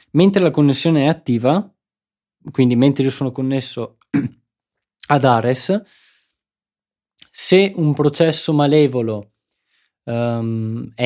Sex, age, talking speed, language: male, 20-39, 90 wpm, Italian